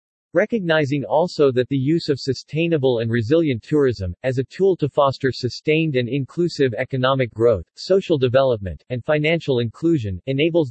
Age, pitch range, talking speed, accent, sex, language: 40-59, 120-150 Hz, 145 wpm, American, male, English